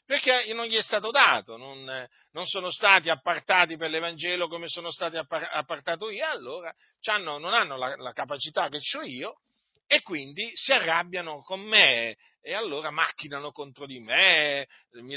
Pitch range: 155-225 Hz